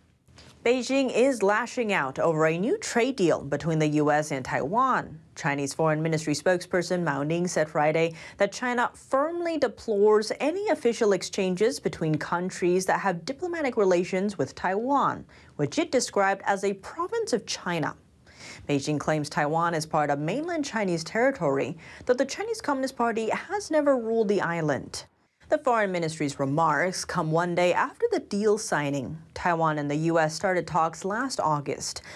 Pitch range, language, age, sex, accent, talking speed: 160-245 Hz, English, 30-49, female, American, 155 wpm